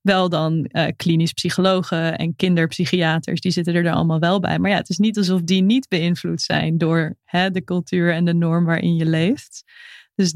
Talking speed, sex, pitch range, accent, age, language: 190 wpm, female, 170-195 Hz, Dutch, 20-39, Dutch